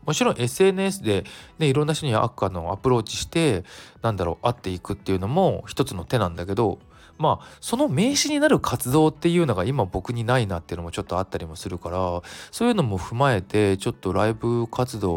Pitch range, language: 95-145 Hz, Japanese